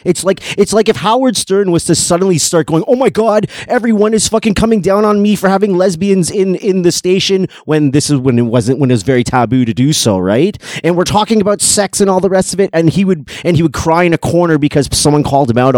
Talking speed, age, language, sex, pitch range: 265 wpm, 30-49, English, male, 140-210 Hz